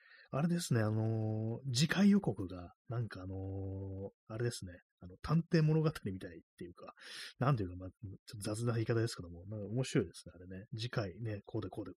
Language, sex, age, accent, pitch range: Japanese, male, 30-49, native, 95-130 Hz